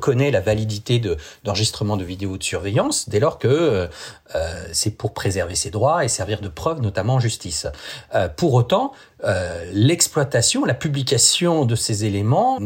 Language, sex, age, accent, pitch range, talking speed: French, male, 40-59, French, 95-120 Hz, 165 wpm